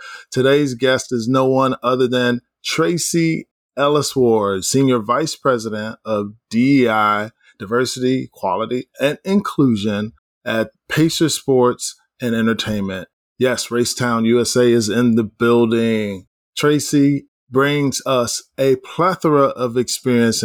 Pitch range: 115-140 Hz